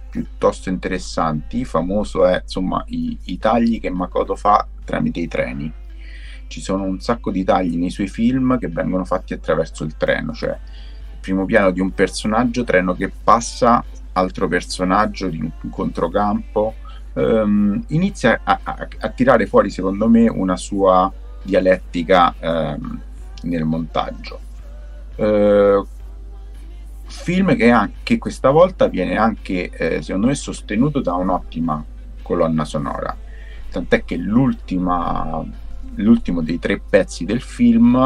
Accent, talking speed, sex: native, 125 wpm, male